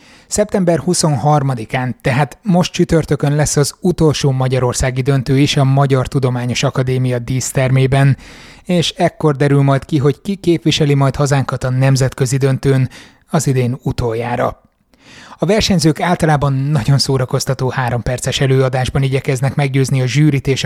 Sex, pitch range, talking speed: male, 130-150 Hz, 130 wpm